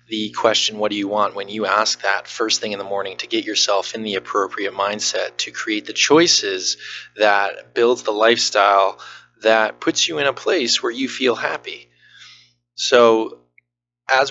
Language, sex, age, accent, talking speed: English, male, 20-39, American, 175 wpm